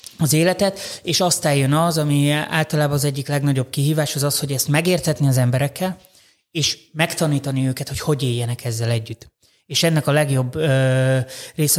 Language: Hungarian